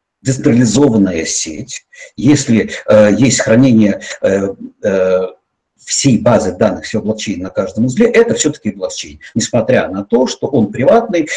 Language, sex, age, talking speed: Russian, male, 50-69, 130 wpm